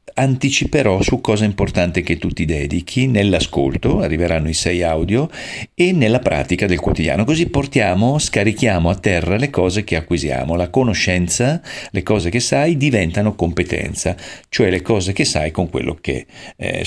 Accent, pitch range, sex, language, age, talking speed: native, 90-115 Hz, male, Italian, 40-59, 155 wpm